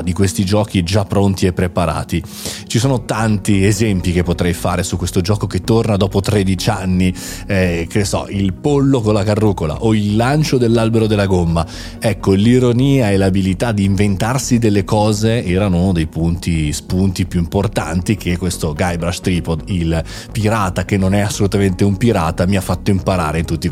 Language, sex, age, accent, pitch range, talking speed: Italian, male, 30-49, native, 90-120 Hz, 175 wpm